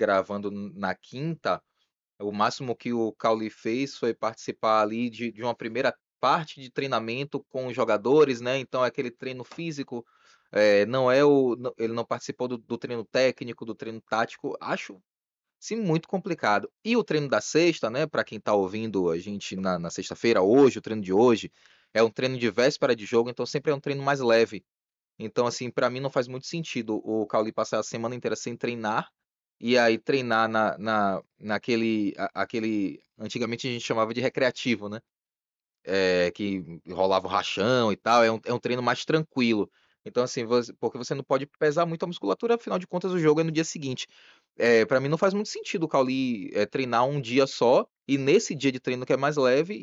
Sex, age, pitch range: male, 20-39, 110-140 Hz